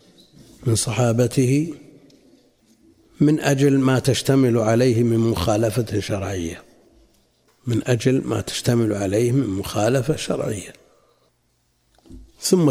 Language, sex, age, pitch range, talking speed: Arabic, male, 60-79, 110-135 Hz, 90 wpm